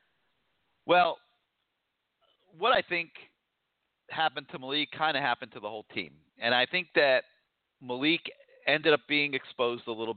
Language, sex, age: English, male, 40-59